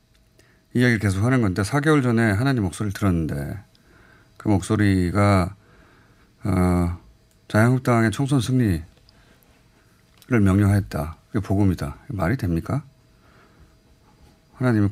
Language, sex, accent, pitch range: Korean, male, native, 100-145 Hz